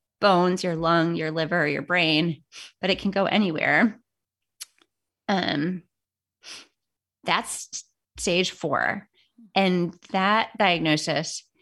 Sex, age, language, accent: female, 30-49, English, American